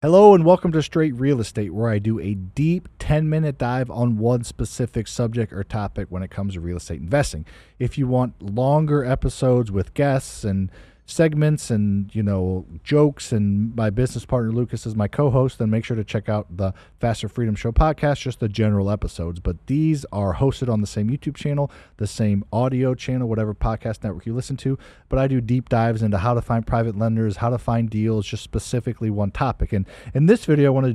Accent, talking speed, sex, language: American, 210 wpm, male, English